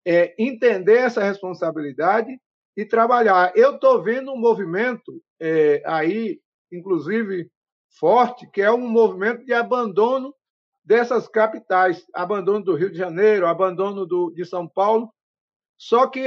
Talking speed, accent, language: 120 wpm, Brazilian, Portuguese